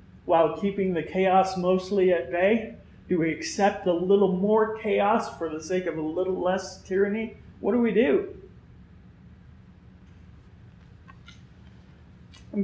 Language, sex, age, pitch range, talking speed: English, male, 40-59, 170-205 Hz, 130 wpm